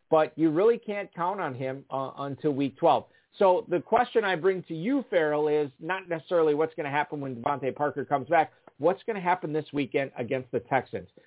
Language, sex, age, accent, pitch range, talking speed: English, male, 50-69, American, 145-180 Hz, 215 wpm